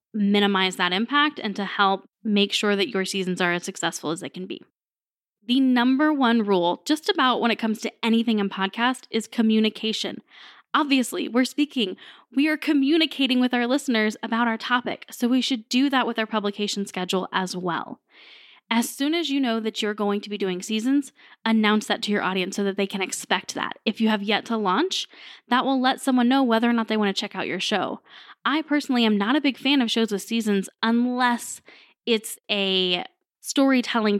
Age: 10-29